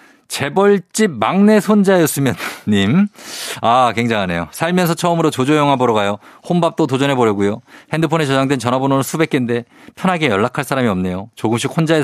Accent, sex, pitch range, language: native, male, 110-165 Hz, Korean